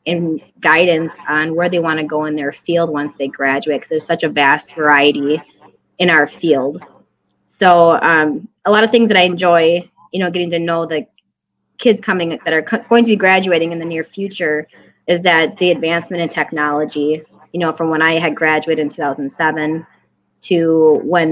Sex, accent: female, American